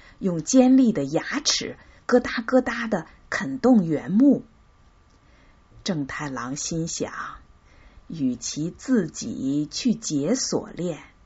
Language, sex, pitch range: Chinese, female, 140-235 Hz